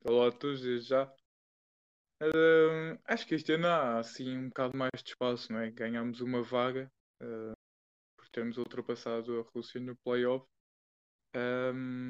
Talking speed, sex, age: 160 wpm, male, 20-39